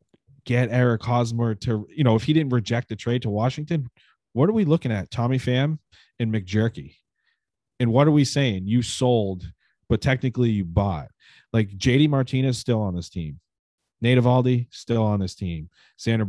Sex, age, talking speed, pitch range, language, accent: male, 30-49, 175 wpm, 100-125 Hz, English, American